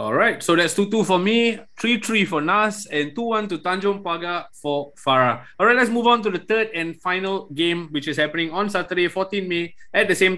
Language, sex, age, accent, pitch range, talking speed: English, male, 20-39, Malaysian, 155-195 Hz, 215 wpm